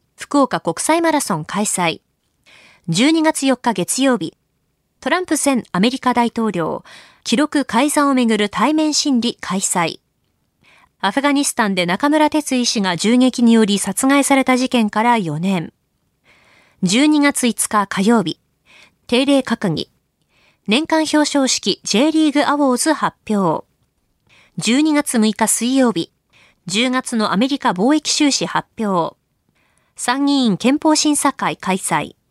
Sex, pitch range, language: female, 205-285 Hz, Japanese